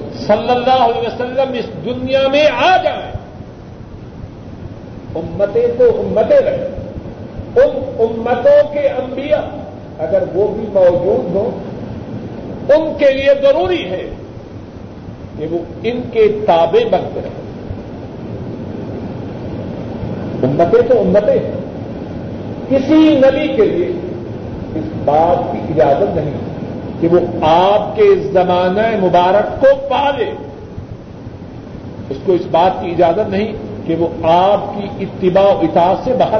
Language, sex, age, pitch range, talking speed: Urdu, male, 50-69, 175-265 Hz, 115 wpm